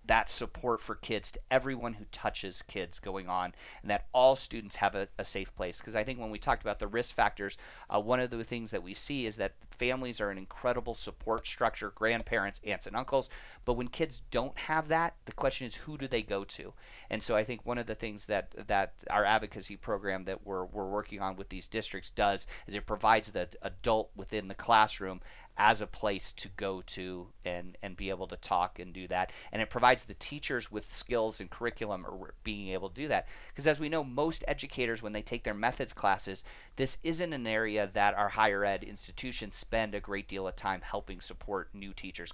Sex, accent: male, American